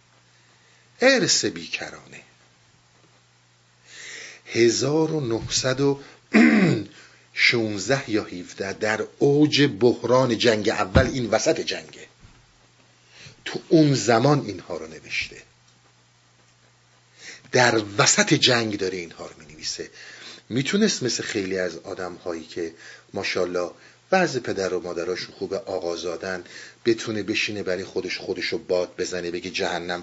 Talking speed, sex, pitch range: 100 wpm, male, 85-135 Hz